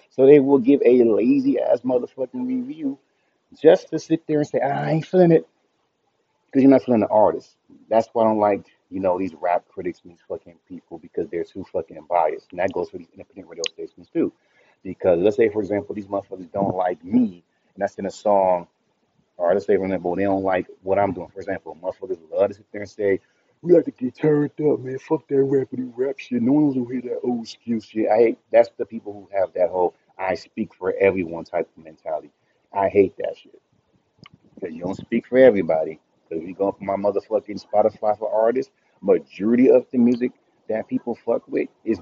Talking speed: 220 wpm